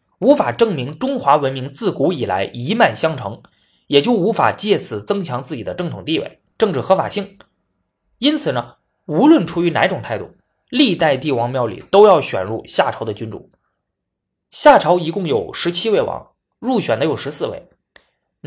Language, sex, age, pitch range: Chinese, male, 20-39, 135-205 Hz